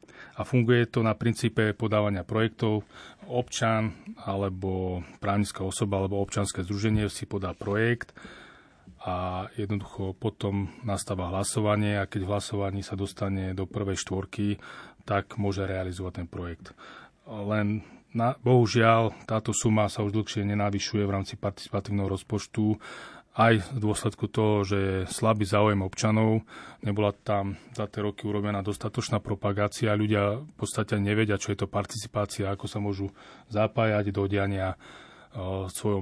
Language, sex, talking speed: Slovak, male, 135 wpm